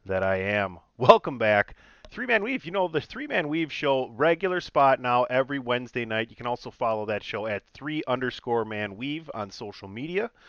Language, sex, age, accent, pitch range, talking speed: English, male, 30-49, American, 110-145 Hz, 200 wpm